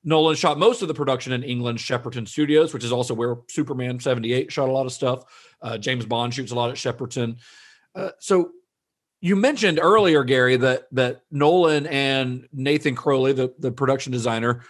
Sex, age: male, 40-59